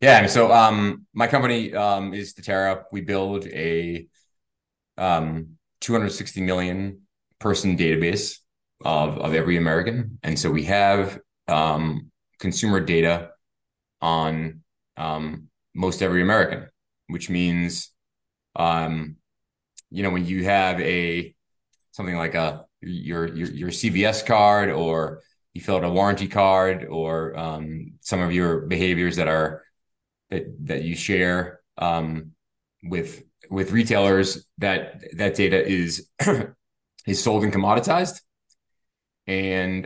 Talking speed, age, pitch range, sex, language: 125 wpm, 20-39, 80-100 Hz, male, English